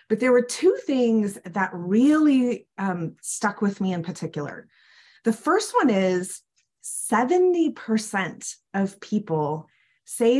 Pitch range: 190-255 Hz